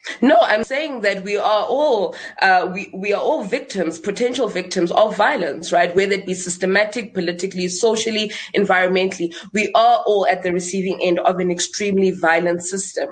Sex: female